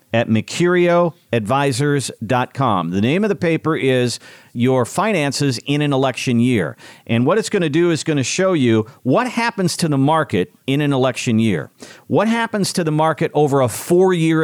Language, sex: English, male